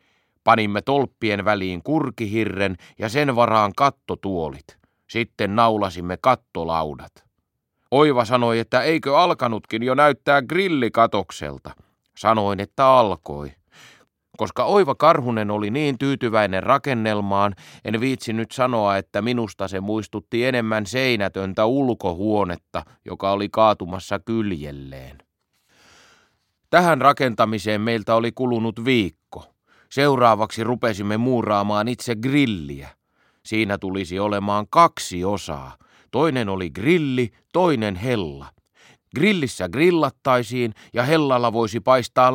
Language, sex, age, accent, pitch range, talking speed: Finnish, male, 30-49, native, 100-125 Hz, 100 wpm